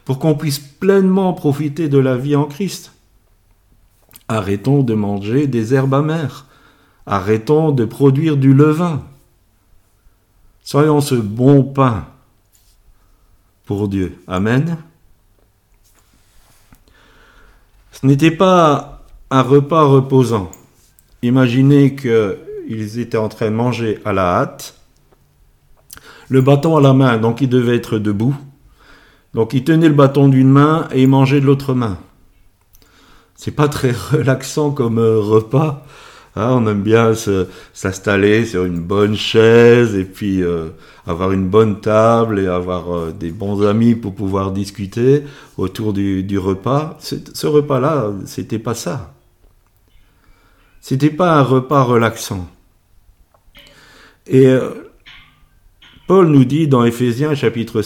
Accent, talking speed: French, 120 wpm